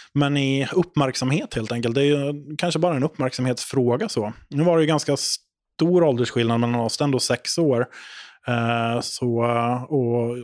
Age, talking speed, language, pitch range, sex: 20-39, 155 wpm, English, 115-135 Hz, male